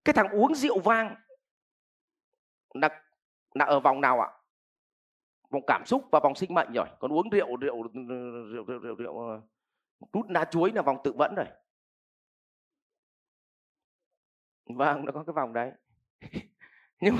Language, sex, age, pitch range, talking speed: Vietnamese, male, 30-49, 145-220 Hz, 145 wpm